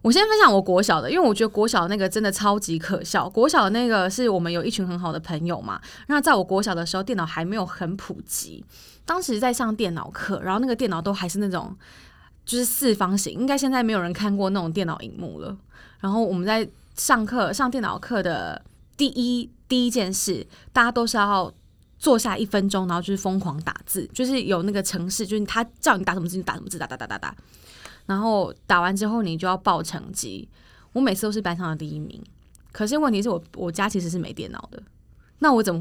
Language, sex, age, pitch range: Chinese, female, 20-39, 180-230 Hz